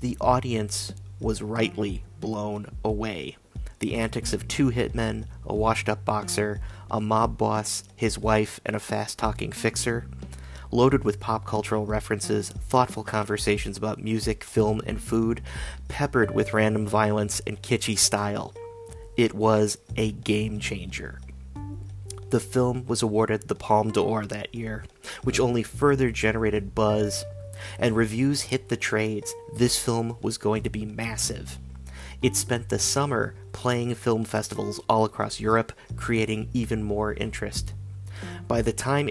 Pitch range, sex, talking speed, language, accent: 105-115 Hz, male, 135 wpm, English, American